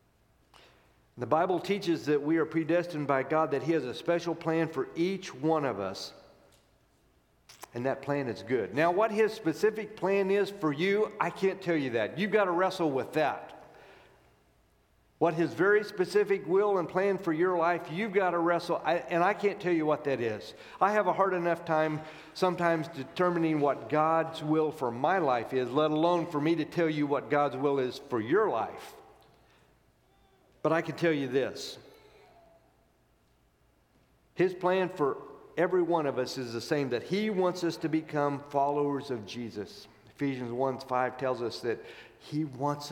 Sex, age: male, 50-69